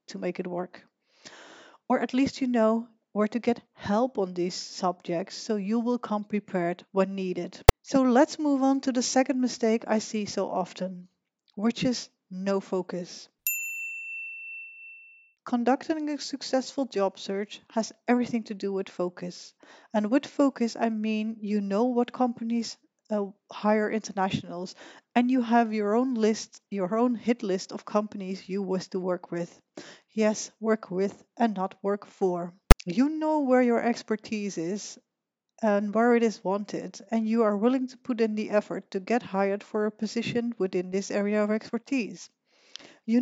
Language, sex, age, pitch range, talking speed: English, female, 40-59, 195-245 Hz, 160 wpm